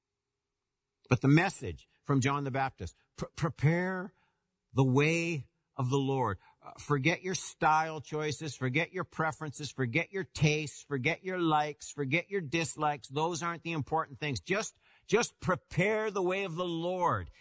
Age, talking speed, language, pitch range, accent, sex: 50-69, 150 wpm, English, 115-155 Hz, American, male